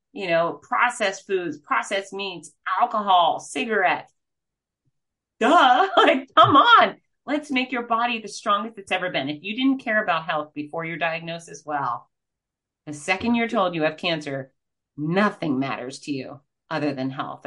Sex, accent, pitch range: female, American, 140-190 Hz